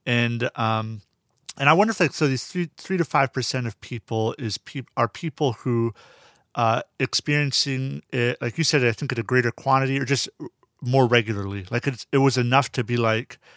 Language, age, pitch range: English, 40-59, 115-140 Hz